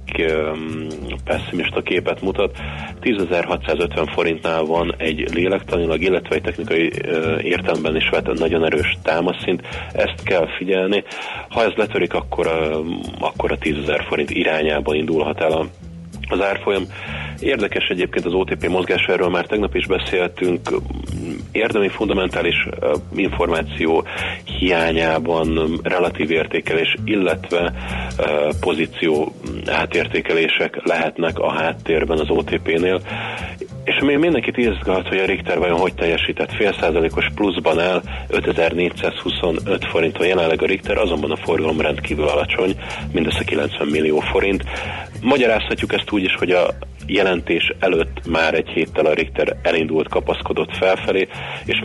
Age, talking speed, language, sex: 40-59, 120 wpm, Hungarian, male